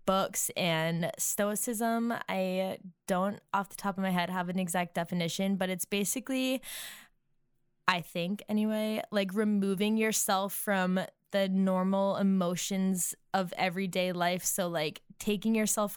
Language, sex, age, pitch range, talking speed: English, female, 10-29, 180-210 Hz, 130 wpm